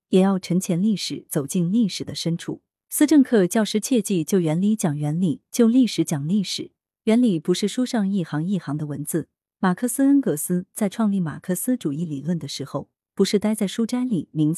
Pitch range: 155-220 Hz